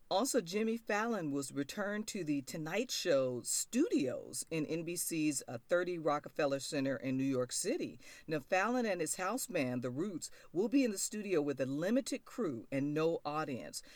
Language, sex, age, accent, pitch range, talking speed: English, female, 40-59, American, 135-185 Hz, 170 wpm